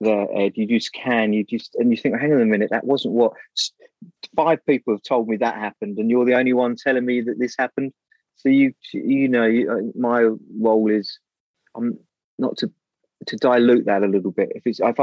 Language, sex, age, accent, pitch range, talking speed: English, male, 30-49, British, 105-130 Hz, 215 wpm